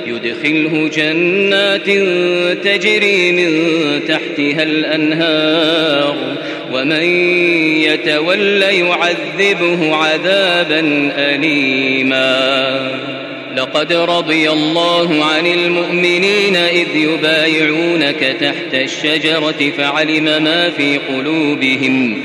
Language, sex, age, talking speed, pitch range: Arabic, male, 30-49, 65 wpm, 145-175 Hz